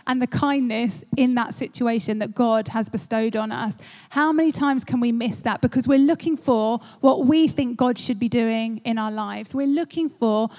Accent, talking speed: British, 205 wpm